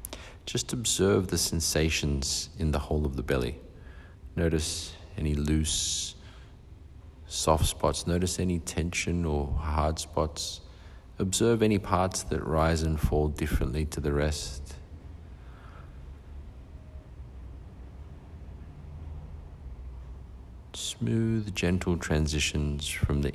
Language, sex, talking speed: English, male, 95 wpm